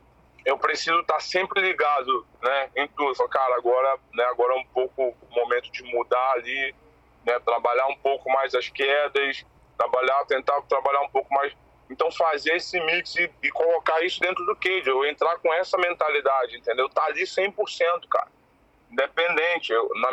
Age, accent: 20-39, Brazilian